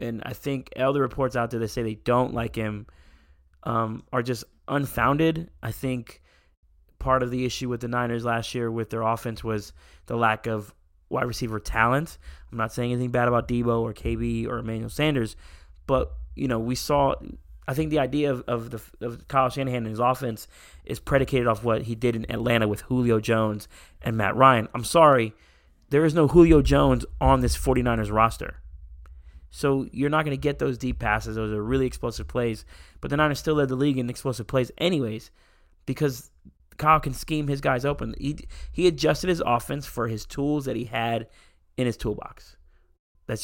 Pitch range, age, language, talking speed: 110-130 Hz, 20-39, English, 195 wpm